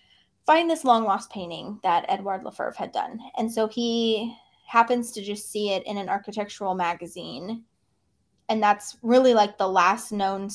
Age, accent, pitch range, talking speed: 20-39, American, 190-235 Hz, 165 wpm